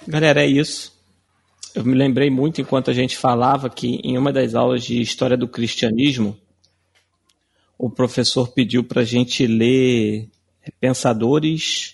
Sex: male